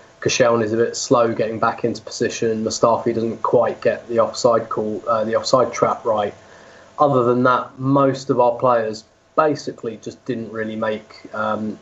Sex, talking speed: male, 175 wpm